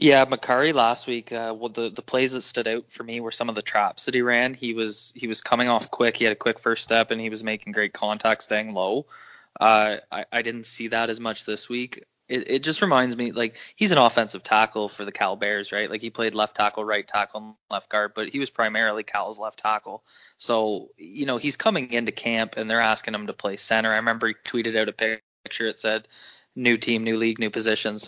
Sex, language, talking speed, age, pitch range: male, English, 245 wpm, 20-39, 110-120 Hz